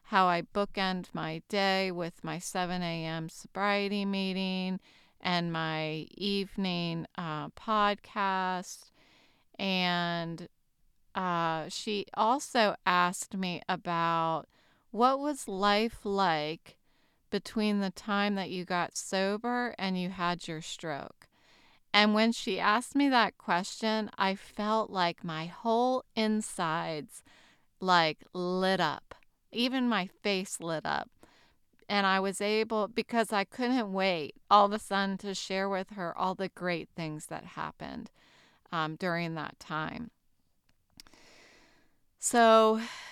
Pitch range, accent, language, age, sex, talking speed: 175-210 Hz, American, English, 30-49, female, 120 wpm